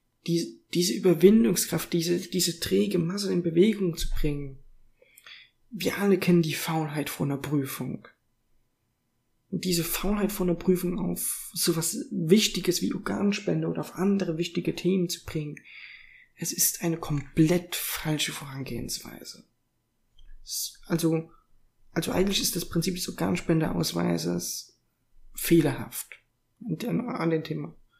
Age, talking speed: 20-39, 120 wpm